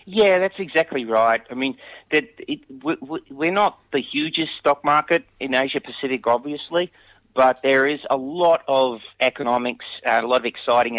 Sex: male